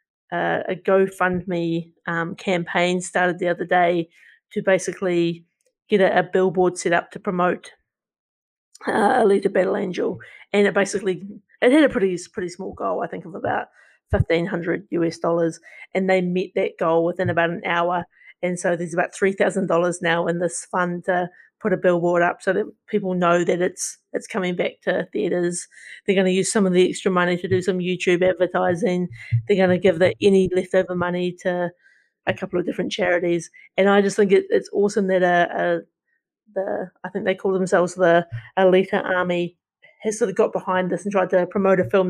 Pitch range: 175-195 Hz